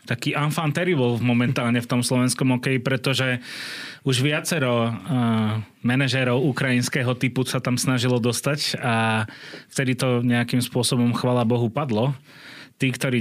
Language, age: Slovak, 30-49